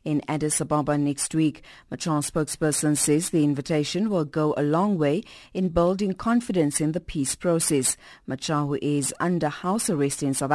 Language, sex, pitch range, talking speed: English, female, 150-185 Hz, 170 wpm